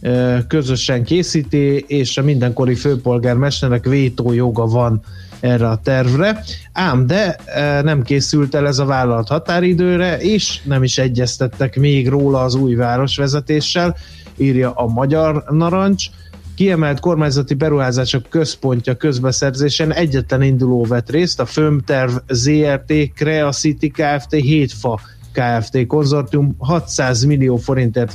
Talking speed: 115 wpm